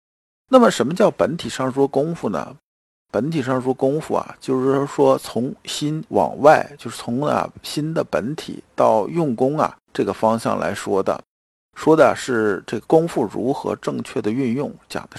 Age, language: 50-69, Chinese